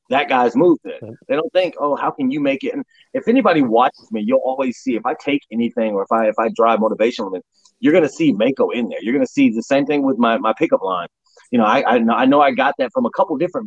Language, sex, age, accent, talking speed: English, male, 30-49, American, 275 wpm